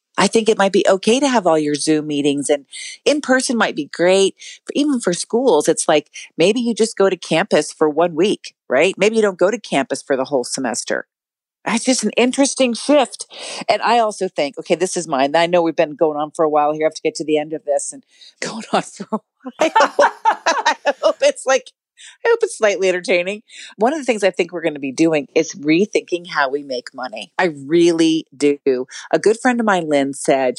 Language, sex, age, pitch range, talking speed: English, female, 40-59, 150-210 Hz, 235 wpm